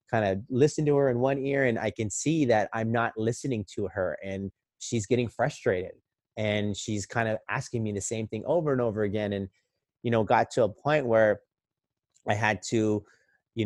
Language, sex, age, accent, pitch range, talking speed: English, male, 30-49, American, 105-125 Hz, 205 wpm